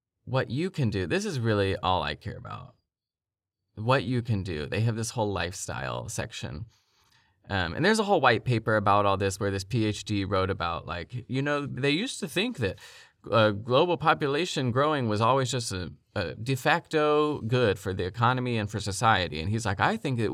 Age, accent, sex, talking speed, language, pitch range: 20-39, American, male, 200 wpm, English, 100-130 Hz